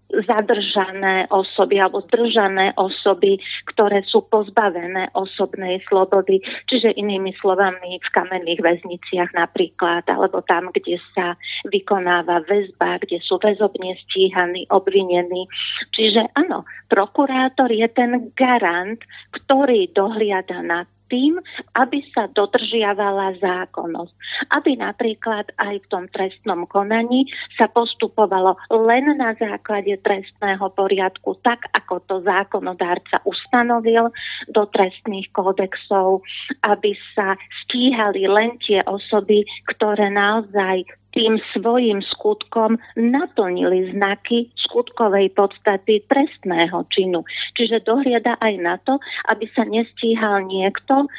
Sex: female